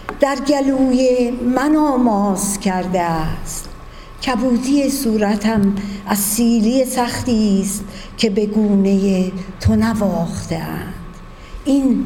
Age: 50-69